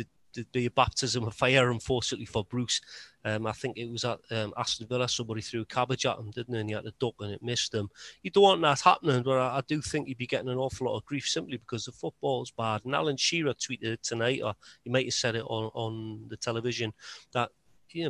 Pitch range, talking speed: 120-145 Hz, 245 wpm